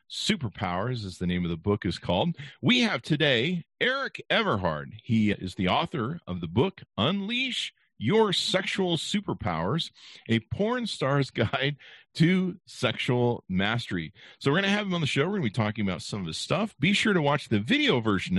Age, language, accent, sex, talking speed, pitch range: 50-69, English, American, male, 190 wpm, 100-150 Hz